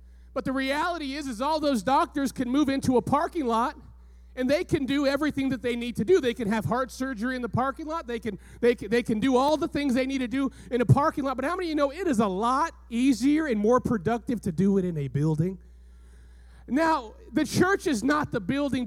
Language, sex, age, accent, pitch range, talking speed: English, male, 30-49, American, 205-260 Hz, 240 wpm